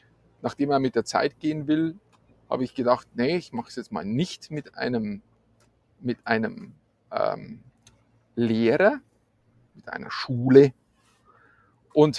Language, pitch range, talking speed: German, 120-155 Hz, 130 wpm